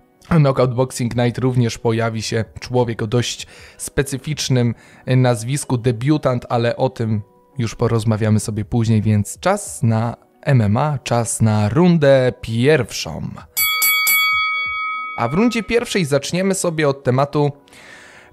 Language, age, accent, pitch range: Polish, 20-39, native, 120-145 Hz